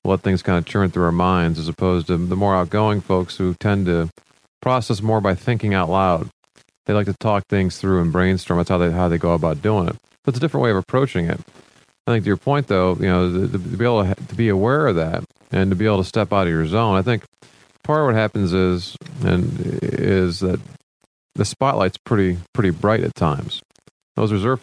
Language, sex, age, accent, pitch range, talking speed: English, male, 40-59, American, 90-115 Hz, 230 wpm